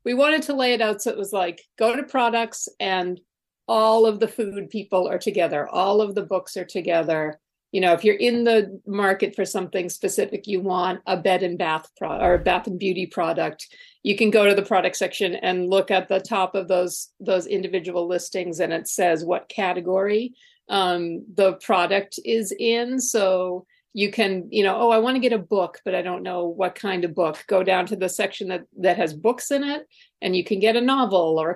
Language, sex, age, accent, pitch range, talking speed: English, female, 50-69, American, 180-220 Hz, 220 wpm